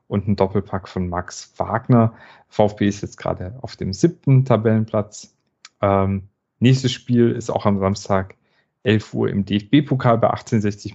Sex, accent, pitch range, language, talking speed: male, German, 100-120 Hz, German, 150 wpm